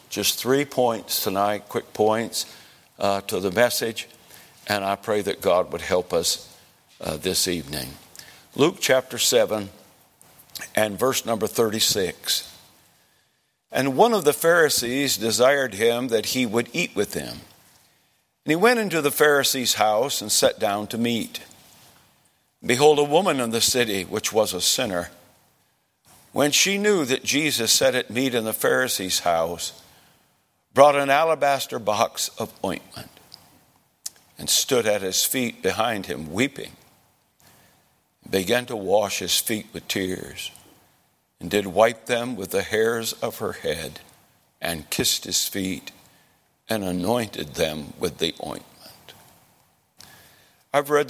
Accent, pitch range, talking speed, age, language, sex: American, 100-130 Hz, 140 wpm, 60-79, English, male